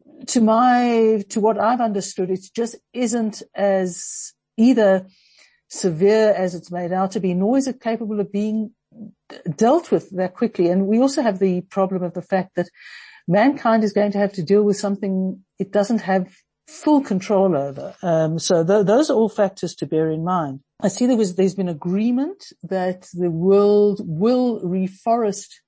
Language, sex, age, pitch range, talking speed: English, female, 60-79, 180-220 Hz, 175 wpm